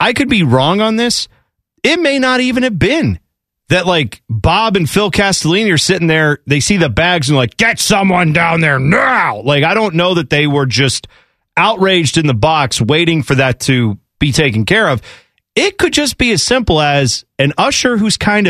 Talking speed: 205 wpm